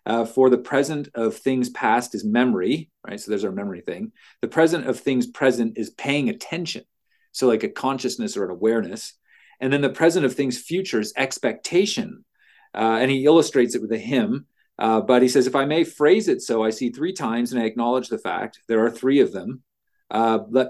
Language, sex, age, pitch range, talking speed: English, male, 40-59, 115-155 Hz, 210 wpm